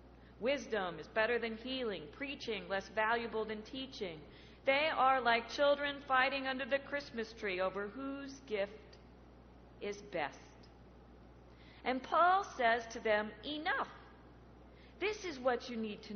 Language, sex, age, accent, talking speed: English, female, 40-59, American, 135 wpm